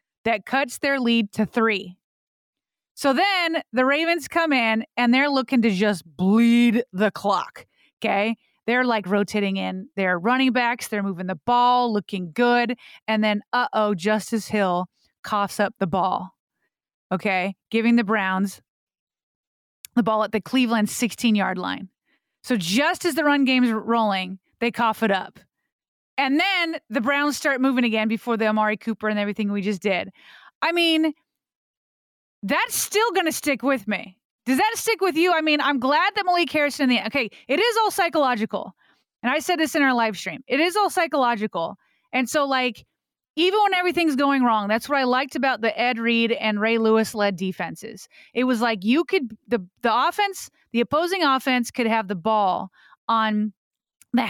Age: 30-49